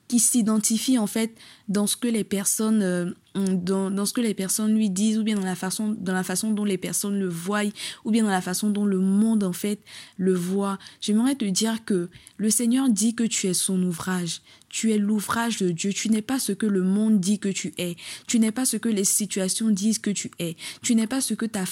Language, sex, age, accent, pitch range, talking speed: French, female, 20-39, French, 190-225 Hz, 245 wpm